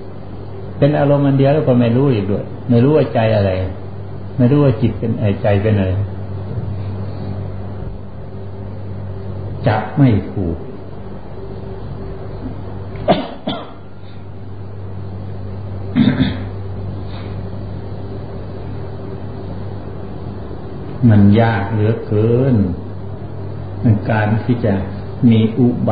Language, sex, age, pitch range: Thai, male, 60-79, 95-110 Hz